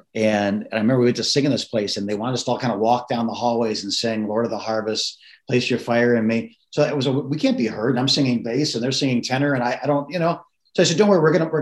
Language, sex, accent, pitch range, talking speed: English, male, American, 120-150 Hz, 335 wpm